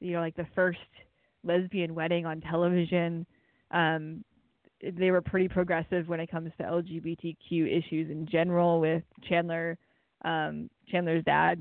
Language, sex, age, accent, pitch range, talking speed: English, female, 20-39, American, 170-205 Hz, 140 wpm